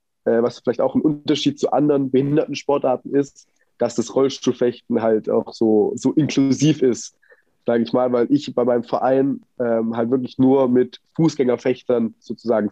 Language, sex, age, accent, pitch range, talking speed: German, male, 20-39, German, 120-140 Hz, 160 wpm